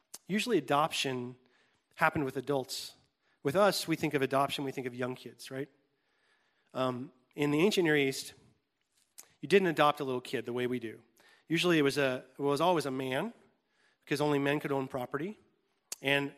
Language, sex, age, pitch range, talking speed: English, male, 40-59, 135-160 Hz, 170 wpm